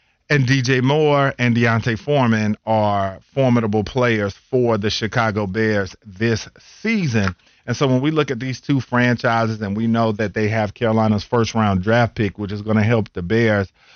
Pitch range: 105-120 Hz